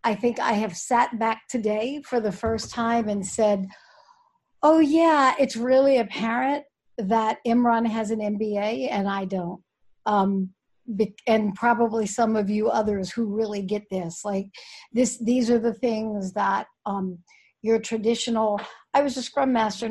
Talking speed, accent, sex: 155 wpm, American, female